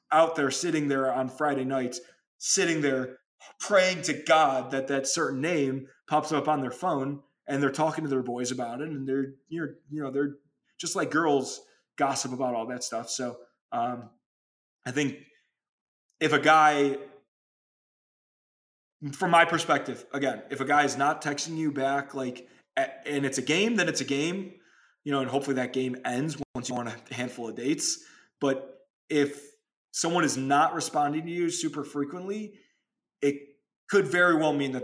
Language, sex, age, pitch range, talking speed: English, male, 20-39, 130-155 Hz, 175 wpm